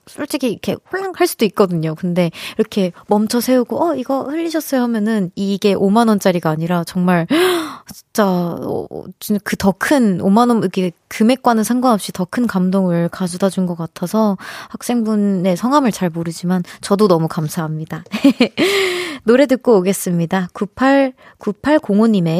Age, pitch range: 20-39, 185-255 Hz